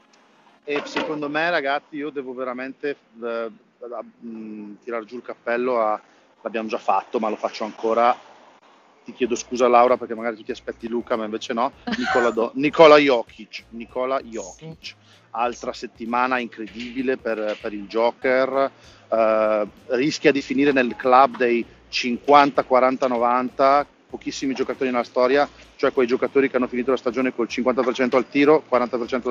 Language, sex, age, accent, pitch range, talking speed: Italian, male, 40-59, native, 115-140 Hz, 145 wpm